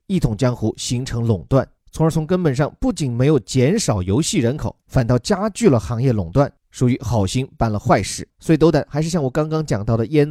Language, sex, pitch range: Chinese, male, 115-170 Hz